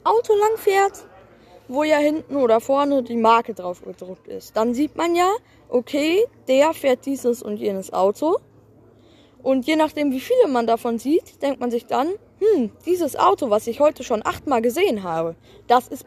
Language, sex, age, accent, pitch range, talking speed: German, female, 10-29, German, 215-280 Hz, 180 wpm